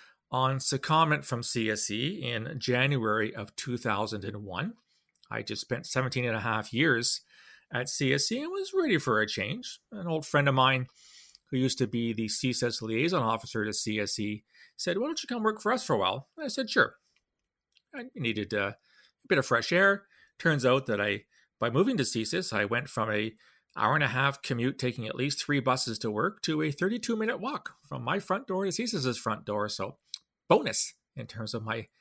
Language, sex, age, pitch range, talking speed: English, male, 40-59, 115-170 Hz, 195 wpm